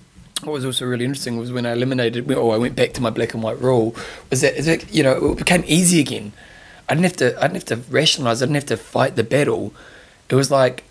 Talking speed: 235 wpm